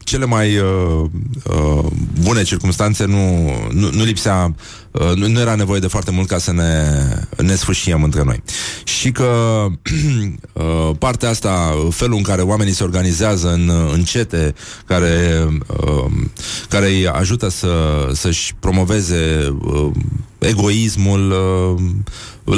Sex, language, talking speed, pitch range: male, Polish, 130 wpm, 90-110 Hz